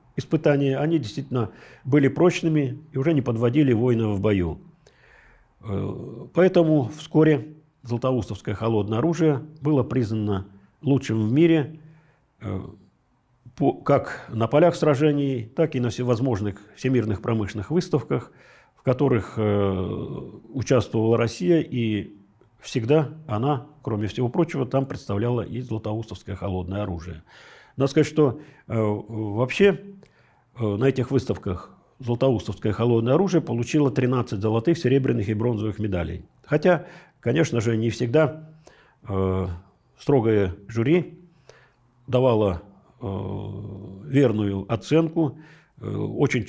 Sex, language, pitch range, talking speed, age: male, Russian, 105-145 Hz, 100 wpm, 50-69